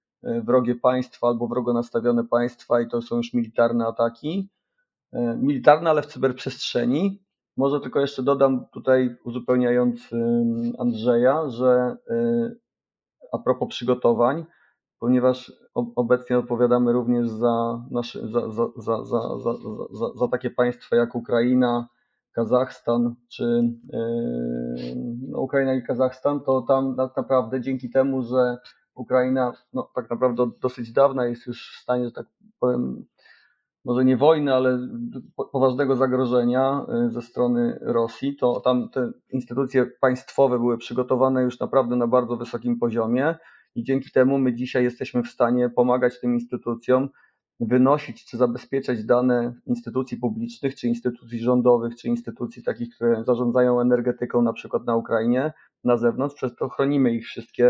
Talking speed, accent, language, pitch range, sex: 125 wpm, native, Polish, 120-130 Hz, male